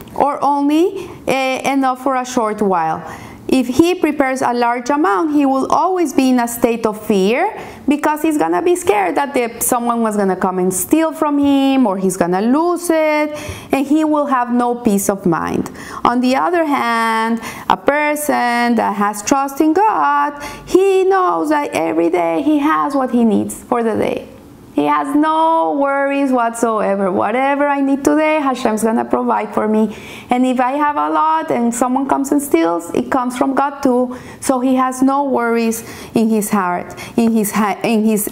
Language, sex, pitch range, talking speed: English, female, 215-285 Hz, 185 wpm